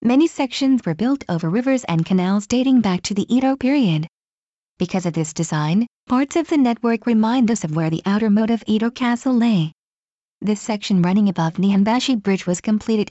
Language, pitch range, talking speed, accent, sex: English, 190-240 Hz, 190 wpm, American, female